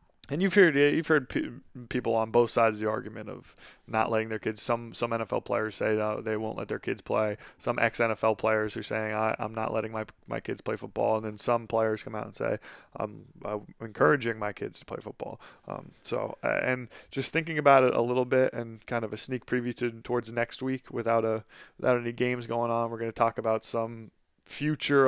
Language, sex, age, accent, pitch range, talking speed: English, male, 20-39, American, 110-125 Hz, 225 wpm